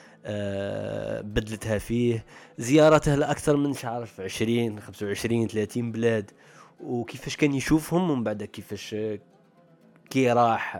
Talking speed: 115 wpm